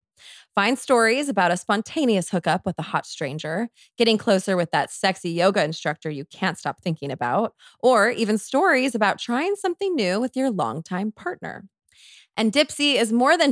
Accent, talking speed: American, 170 wpm